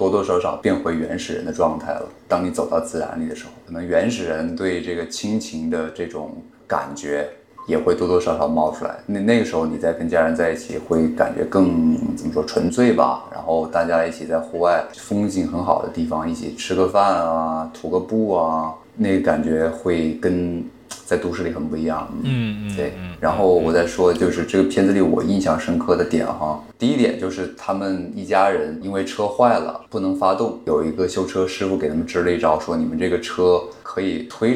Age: 20-39